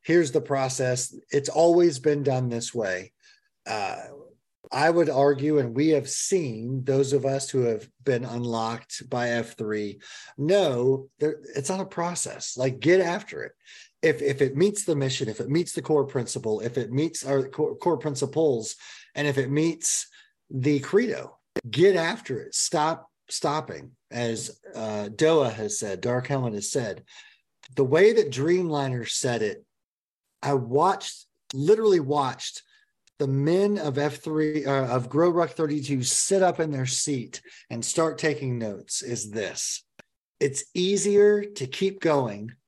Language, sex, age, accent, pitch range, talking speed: English, male, 40-59, American, 125-175 Hz, 155 wpm